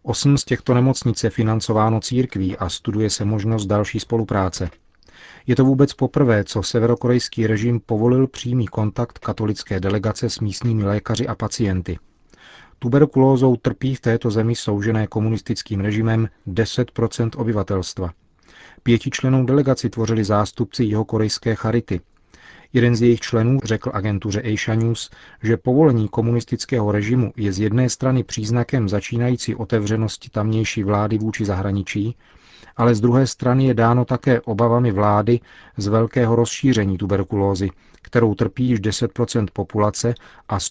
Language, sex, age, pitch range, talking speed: Czech, male, 40-59, 105-120 Hz, 130 wpm